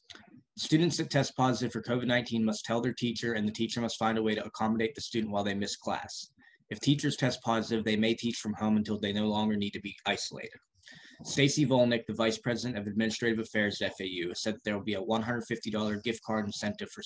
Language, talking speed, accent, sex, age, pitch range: English, 220 wpm, American, male, 20-39, 105-115 Hz